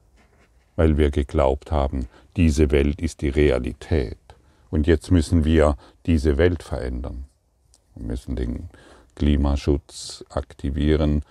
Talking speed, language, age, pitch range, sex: 110 wpm, German, 50-69, 75-85 Hz, male